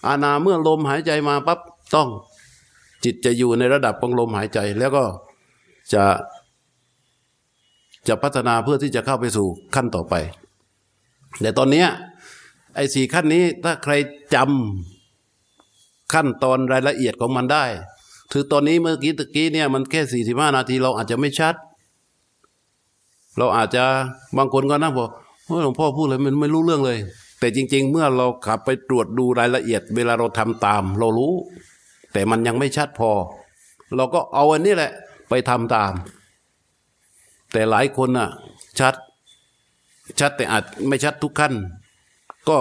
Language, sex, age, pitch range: Thai, male, 60-79, 115-145 Hz